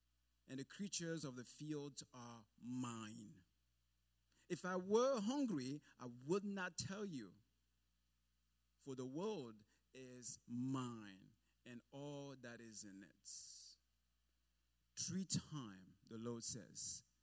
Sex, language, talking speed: male, English, 115 wpm